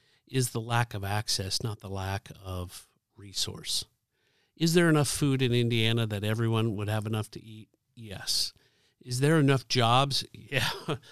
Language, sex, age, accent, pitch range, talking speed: English, male, 50-69, American, 115-140 Hz, 155 wpm